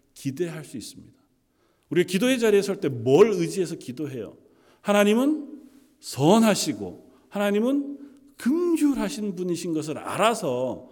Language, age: Korean, 40-59